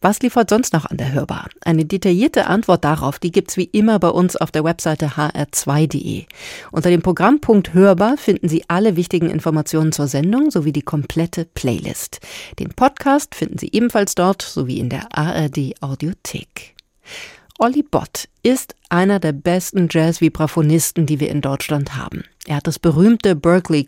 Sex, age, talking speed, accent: female, 40-59, 165 wpm, German